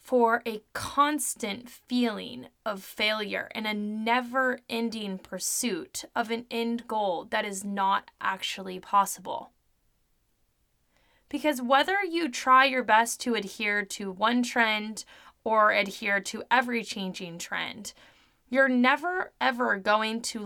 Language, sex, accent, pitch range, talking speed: English, female, American, 210-270 Hz, 120 wpm